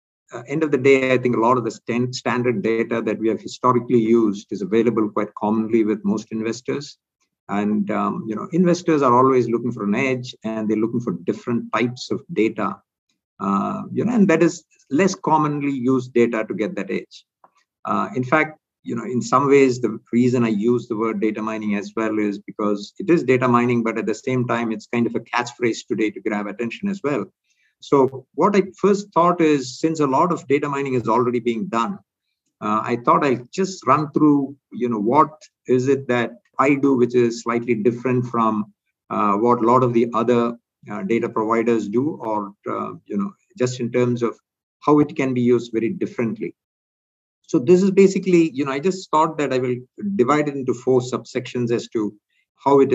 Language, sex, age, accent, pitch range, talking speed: English, male, 50-69, Indian, 110-140 Hz, 205 wpm